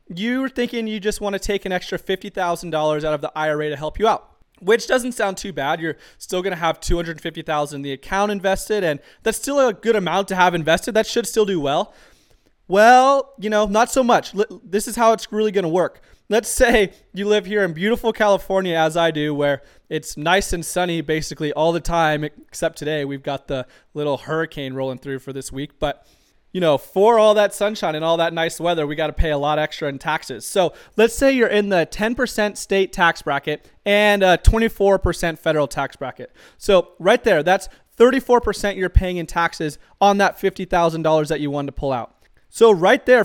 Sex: male